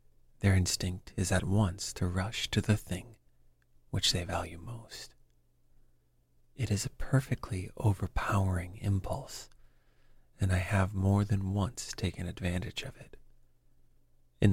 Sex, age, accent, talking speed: male, 40-59, American, 130 wpm